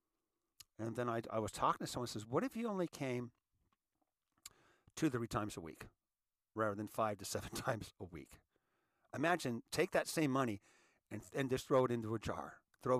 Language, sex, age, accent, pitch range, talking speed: English, male, 50-69, American, 105-135 Hz, 195 wpm